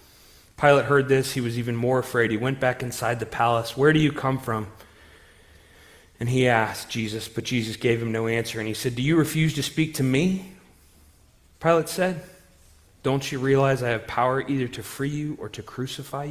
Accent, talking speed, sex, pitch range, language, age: American, 200 wpm, male, 100-130 Hz, English, 30-49